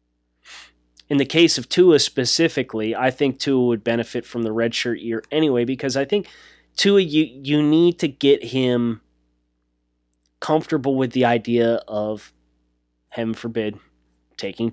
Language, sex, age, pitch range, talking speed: English, male, 20-39, 105-130 Hz, 140 wpm